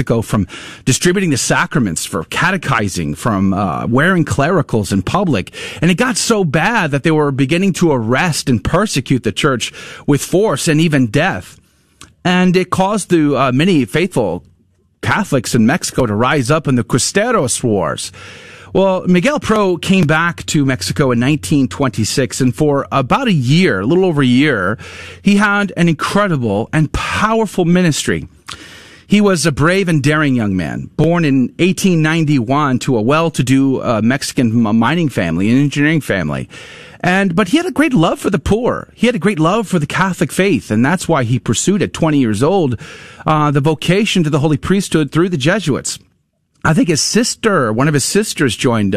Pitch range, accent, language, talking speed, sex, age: 130-185 Hz, American, English, 175 wpm, male, 40-59